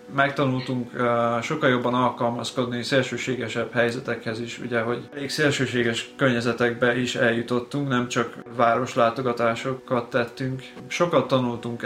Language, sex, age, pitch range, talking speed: Hungarian, male, 20-39, 115-130 Hz, 105 wpm